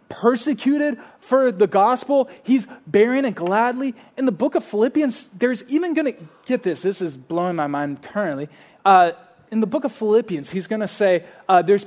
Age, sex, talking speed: 20-39, male, 185 wpm